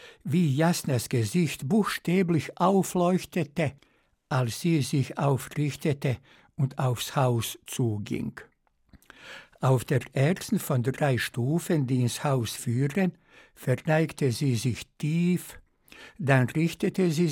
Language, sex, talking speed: German, male, 105 wpm